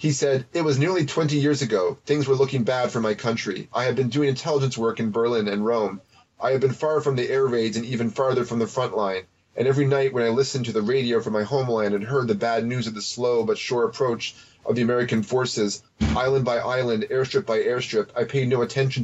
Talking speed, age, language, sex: 245 wpm, 30-49, English, male